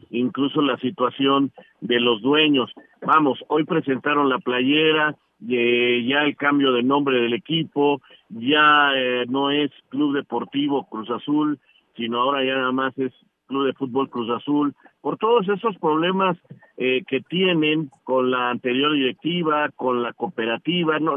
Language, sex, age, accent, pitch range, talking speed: Spanish, male, 50-69, Mexican, 130-170 Hz, 150 wpm